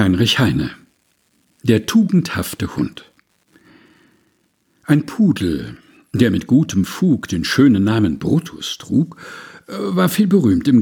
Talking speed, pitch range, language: 110 wpm, 115-190 Hz, German